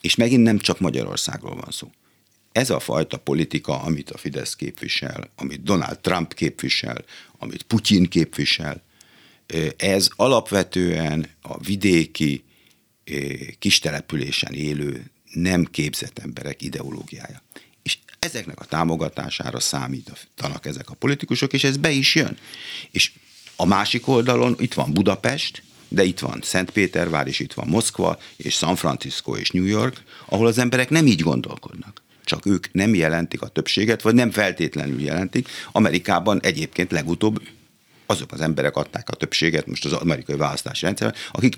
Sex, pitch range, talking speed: male, 80-115 Hz, 140 wpm